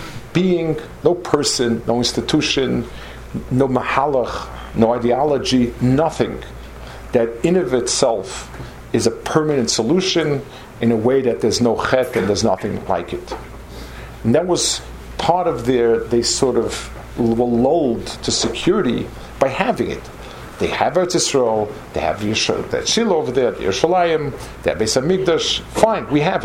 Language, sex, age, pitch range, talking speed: English, male, 50-69, 110-150 Hz, 150 wpm